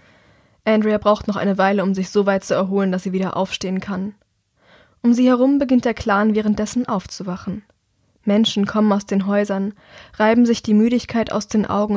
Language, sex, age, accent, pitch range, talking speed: German, female, 10-29, German, 195-225 Hz, 180 wpm